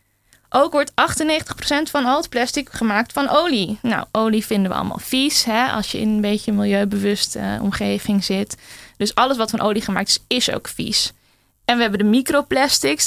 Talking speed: 195 wpm